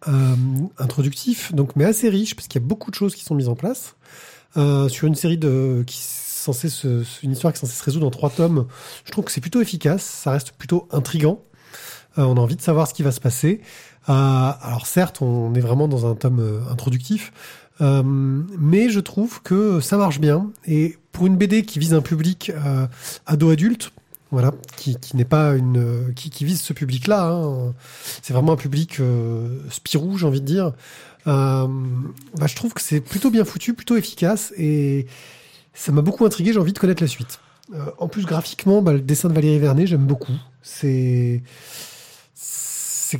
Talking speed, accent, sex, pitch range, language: 200 wpm, French, male, 135-170 Hz, French